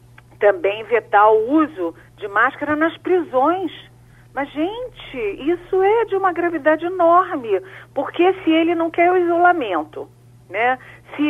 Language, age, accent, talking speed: Portuguese, 40-59, Brazilian, 135 wpm